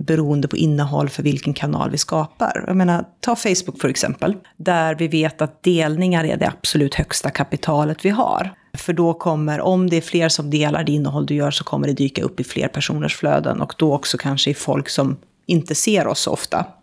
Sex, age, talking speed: female, 30-49, 210 wpm